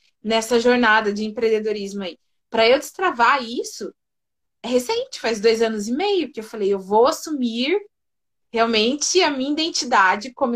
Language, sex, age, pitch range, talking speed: Portuguese, female, 20-39, 215-300 Hz, 155 wpm